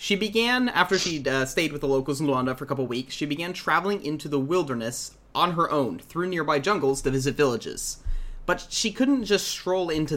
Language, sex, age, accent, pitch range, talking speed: English, male, 30-49, American, 125-160 Hz, 210 wpm